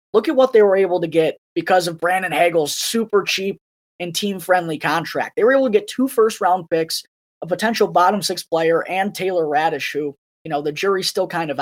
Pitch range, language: 155-210 Hz, English